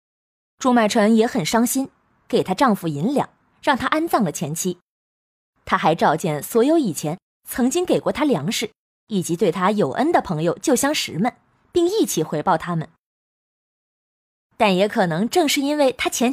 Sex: female